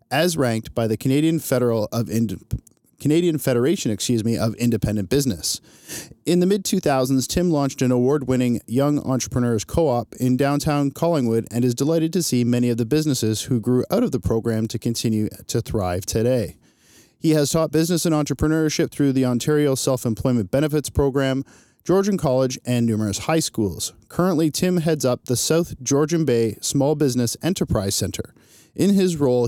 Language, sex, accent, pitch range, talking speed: English, male, American, 120-155 Hz, 165 wpm